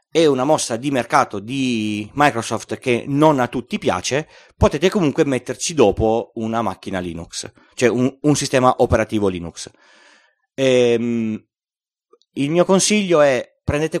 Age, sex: 30-49, male